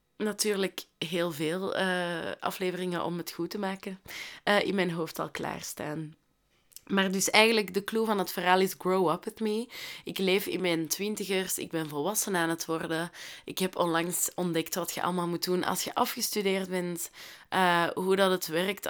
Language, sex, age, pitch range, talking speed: Dutch, female, 20-39, 170-210 Hz, 185 wpm